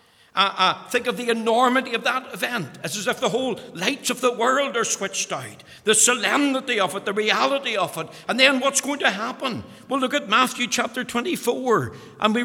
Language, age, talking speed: English, 60-79, 205 wpm